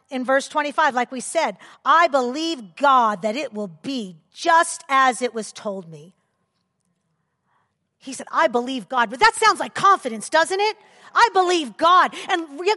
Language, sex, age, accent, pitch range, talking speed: English, female, 40-59, American, 245-370 Hz, 170 wpm